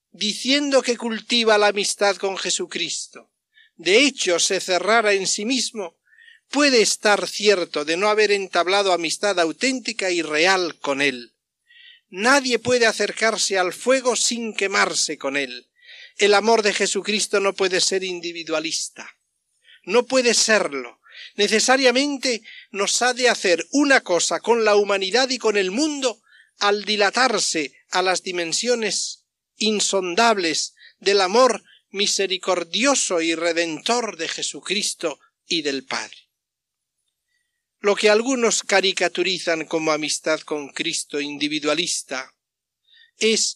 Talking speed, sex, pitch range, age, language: 120 wpm, male, 185-245 Hz, 50-69, Spanish